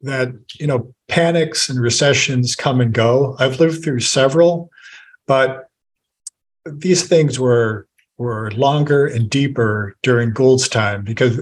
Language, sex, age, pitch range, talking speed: English, male, 50-69, 115-140 Hz, 130 wpm